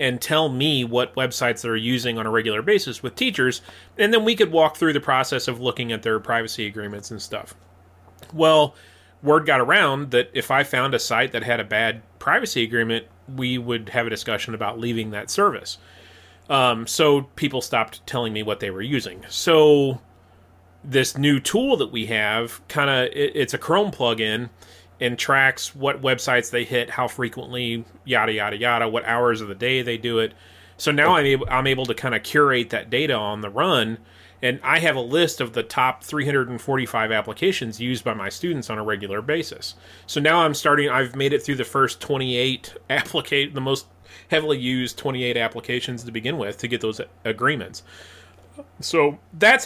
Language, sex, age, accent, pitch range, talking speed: English, male, 30-49, American, 110-135 Hz, 185 wpm